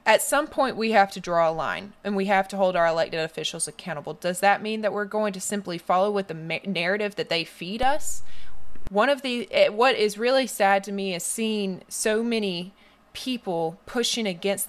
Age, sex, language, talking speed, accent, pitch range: 20-39, female, English, 210 wpm, American, 180-220 Hz